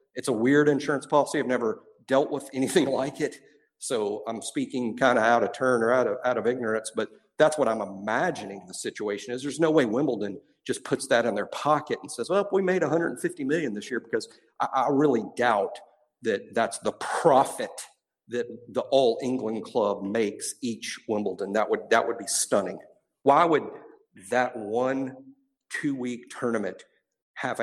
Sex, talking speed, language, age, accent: male, 180 wpm, English, 50-69, American